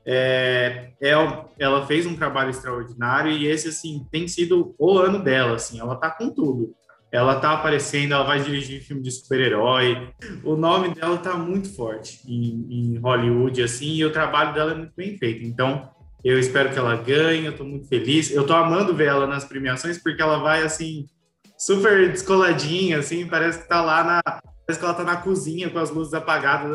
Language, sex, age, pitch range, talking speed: Portuguese, male, 20-39, 130-165 Hz, 190 wpm